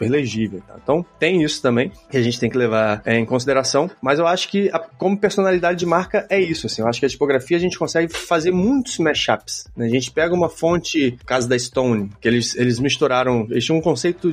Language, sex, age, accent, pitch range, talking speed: Portuguese, male, 20-39, Brazilian, 125-180 Hz, 235 wpm